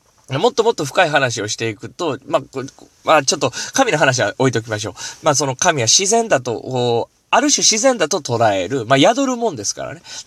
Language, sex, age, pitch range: Japanese, male, 20-39, 115-170 Hz